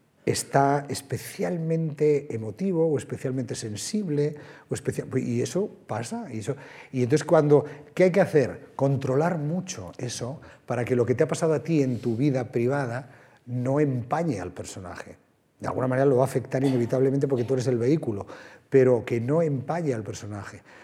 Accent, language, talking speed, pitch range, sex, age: Spanish, Spanish, 170 wpm, 115-150 Hz, male, 40-59